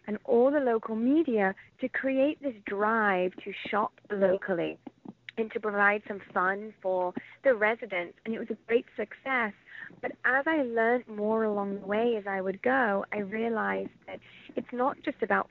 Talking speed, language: 175 wpm, English